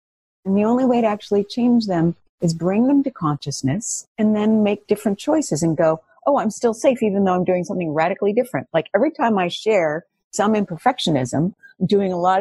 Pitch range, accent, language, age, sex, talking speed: 165-215 Hz, American, English, 50-69, female, 205 wpm